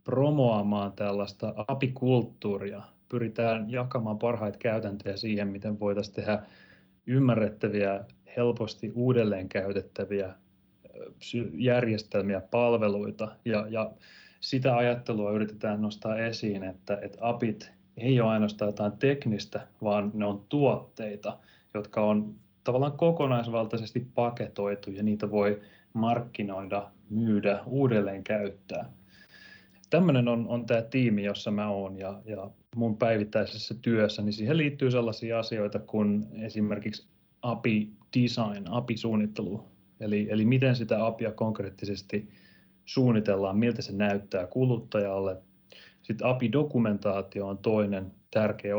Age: 30-49